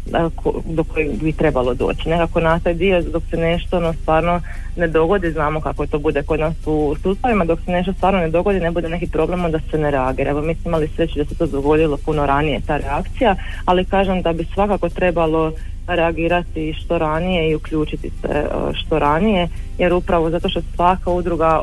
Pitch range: 155-180 Hz